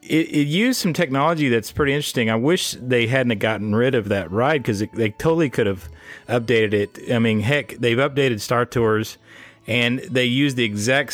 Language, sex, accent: English, male, American